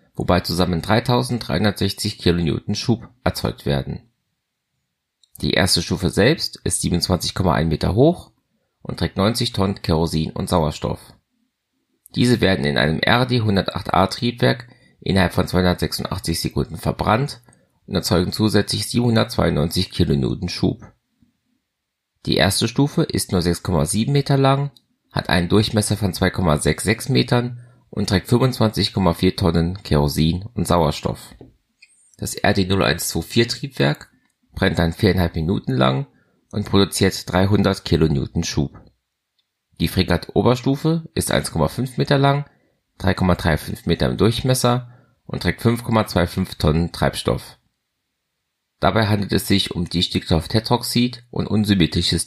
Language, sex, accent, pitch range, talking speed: German, male, German, 85-115 Hz, 110 wpm